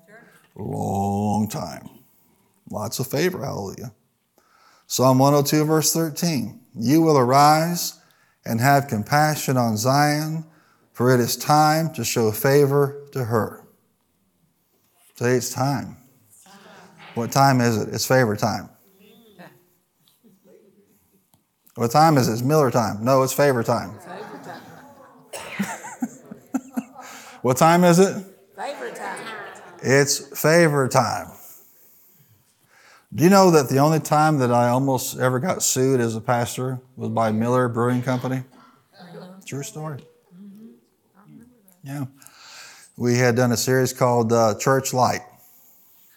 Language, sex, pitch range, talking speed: English, male, 120-155 Hz, 115 wpm